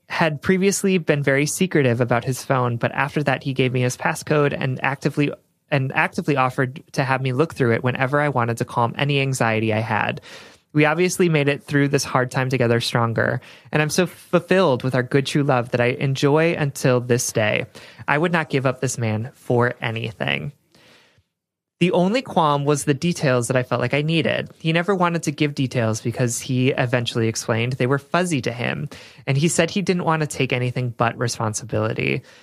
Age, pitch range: 20-39, 125-155 Hz